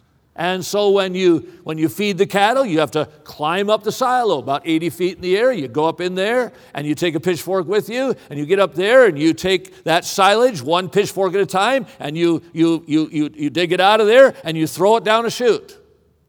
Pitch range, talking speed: 175-215 Hz, 245 wpm